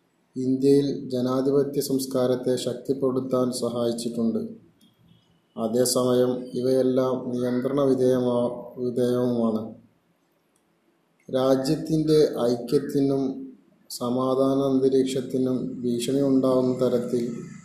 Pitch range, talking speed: 125-145 Hz, 55 wpm